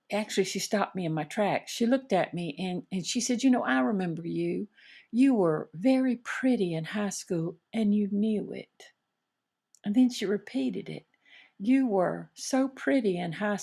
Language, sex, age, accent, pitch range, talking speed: English, female, 50-69, American, 180-245 Hz, 185 wpm